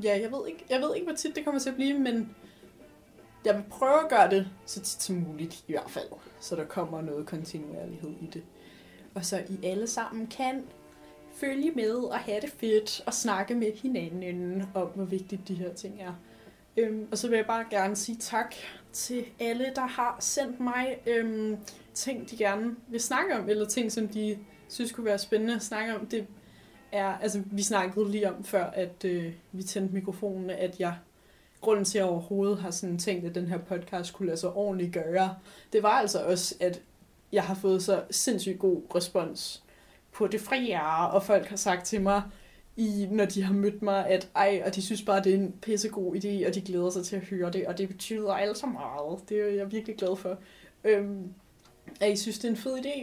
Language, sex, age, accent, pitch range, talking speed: Danish, female, 20-39, native, 185-225 Hz, 210 wpm